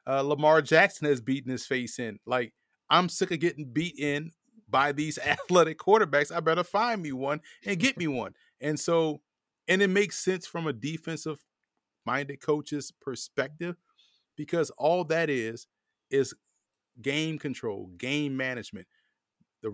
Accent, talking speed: American, 150 wpm